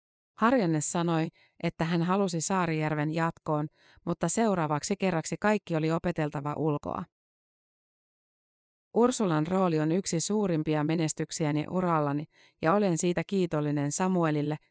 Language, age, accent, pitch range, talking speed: Finnish, 30-49, native, 155-185 Hz, 105 wpm